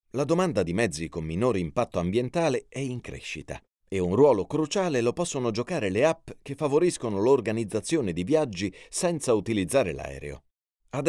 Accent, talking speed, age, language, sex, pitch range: native, 155 wpm, 30-49, Italian, male, 85-140 Hz